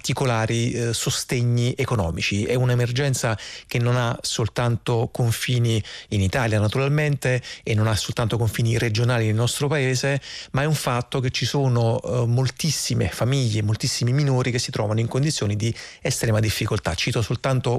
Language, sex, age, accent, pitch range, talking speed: Italian, male, 30-49, native, 115-130 Hz, 145 wpm